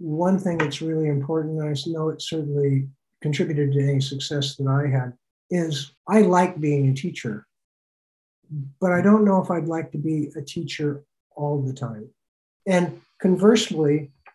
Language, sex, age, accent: English, male, 60-79, American